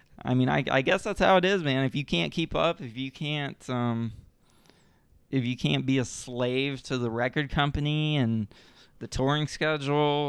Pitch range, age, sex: 115-140 Hz, 20-39, male